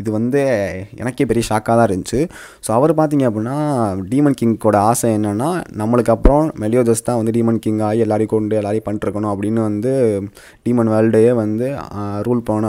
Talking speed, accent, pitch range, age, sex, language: 160 wpm, native, 110-130 Hz, 20-39, male, Tamil